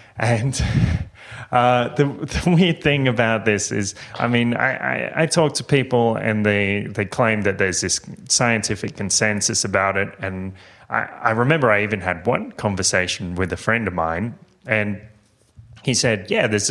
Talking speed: 170 wpm